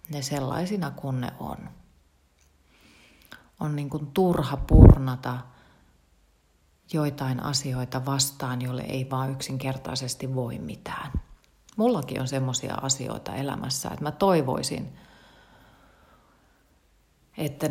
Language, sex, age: Finnish, female, 30-49